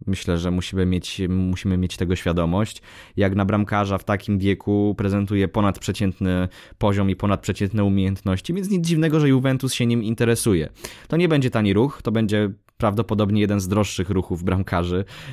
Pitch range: 95-120 Hz